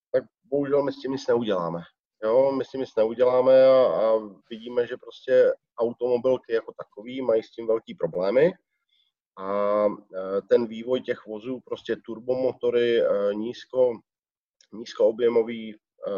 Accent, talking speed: native, 135 wpm